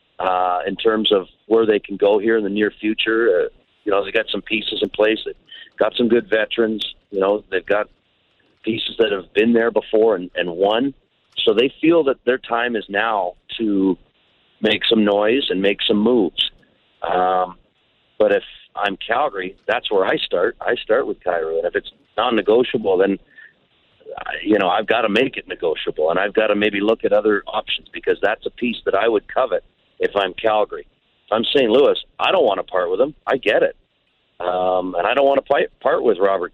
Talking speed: 205 wpm